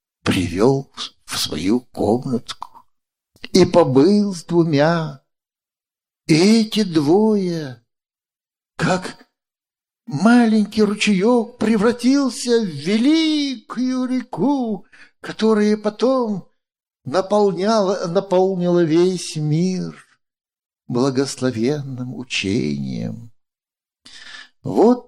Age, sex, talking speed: 60-79, male, 60 wpm